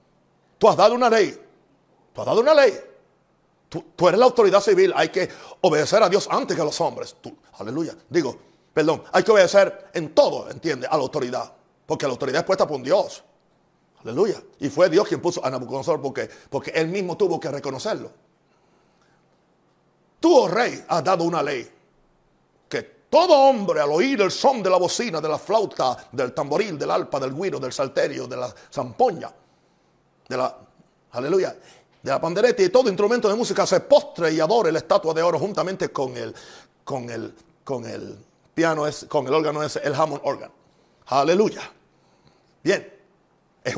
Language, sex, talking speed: Spanish, male, 180 wpm